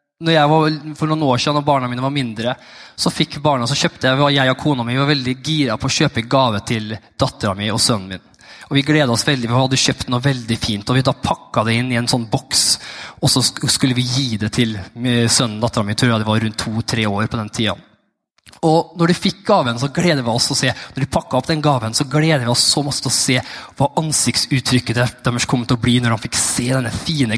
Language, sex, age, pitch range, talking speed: English, male, 20-39, 120-160 Hz, 240 wpm